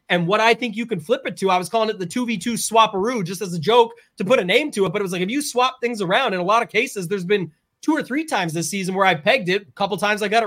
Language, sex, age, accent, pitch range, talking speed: English, male, 30-49, American, 185-230 Hz, 345 wpm